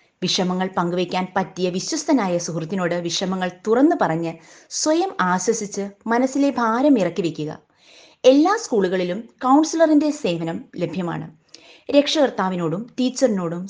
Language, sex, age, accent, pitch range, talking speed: Malayalam, female, 30-49, native, 170-245 Hz, 90 wpm